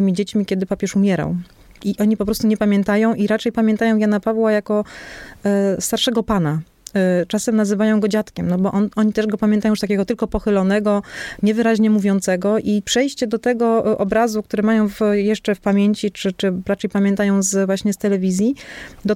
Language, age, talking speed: Polish, 30-49, 165 wpm